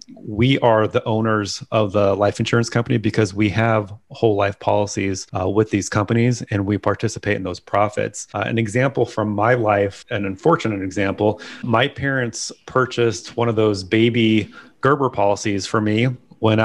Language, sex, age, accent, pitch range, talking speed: English, male, 30-49, American, 105-120 Hz, 165 wpm